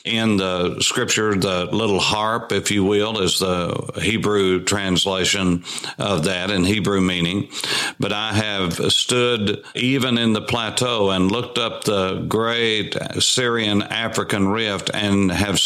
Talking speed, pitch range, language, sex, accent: 135 wpm, 95-115 Hz, English, male, American